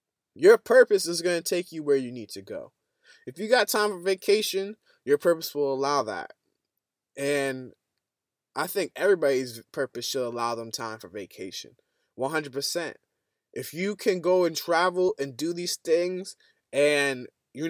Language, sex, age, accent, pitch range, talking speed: English, male, 20-39, American, 140-200 Hz, 160 wpm